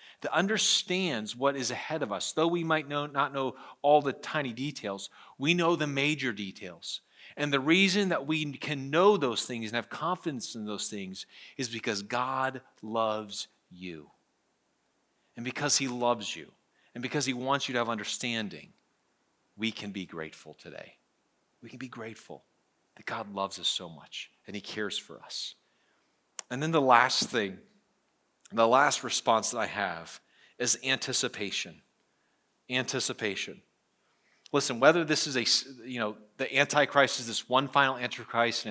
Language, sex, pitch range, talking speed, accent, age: English, male, 120-150 Hz, 160 wpm, American, 40-59